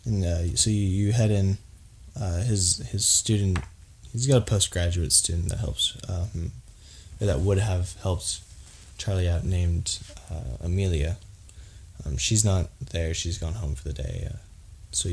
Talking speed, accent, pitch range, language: 160 wpm, American, 85-105 Hz, English